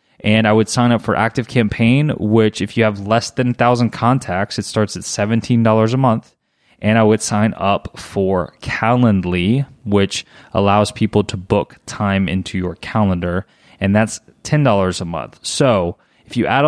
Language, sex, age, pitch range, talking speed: English, male, 20-39, 105-125 Hz, 175 wpm